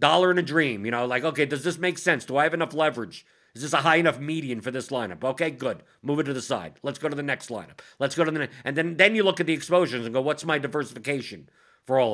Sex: male